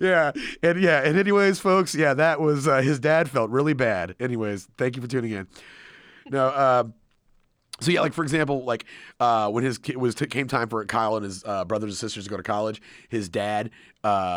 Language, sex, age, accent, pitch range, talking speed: English, male, 30-49, American, 110-150 Hz, 215 wpm